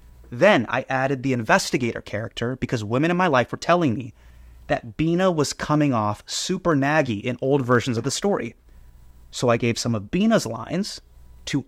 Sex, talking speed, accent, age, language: male, 180 wpm, American, 30-49, English